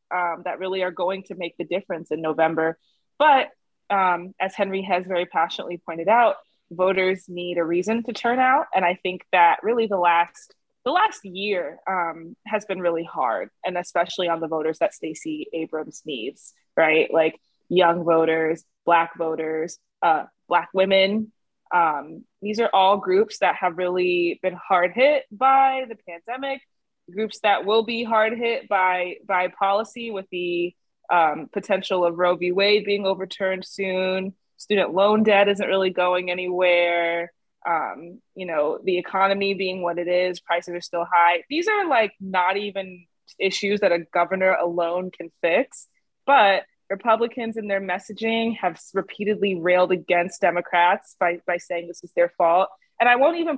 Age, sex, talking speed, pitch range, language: 20-39, female, 165 wpm, 175-210 Hz, English